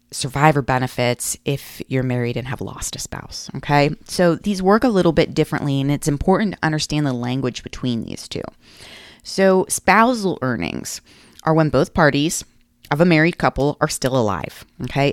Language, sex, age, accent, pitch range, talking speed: English, female, 30-49, American, 130-165 Hz, 170 wpm